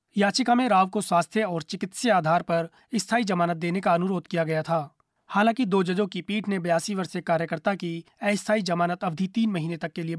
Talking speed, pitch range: 205 wpm, 170-205 Hz